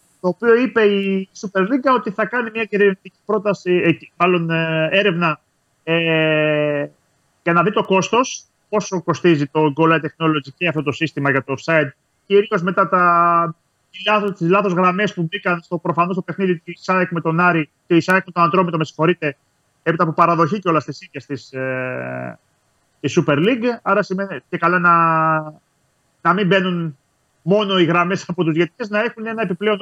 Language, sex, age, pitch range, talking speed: Greek, male, 30-49, 155-195 Hz, 170 wpm